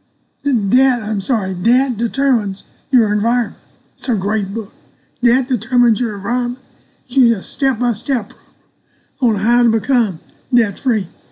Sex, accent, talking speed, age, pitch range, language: male, American, 125 wpm, 50-69, 225-260 Hz, English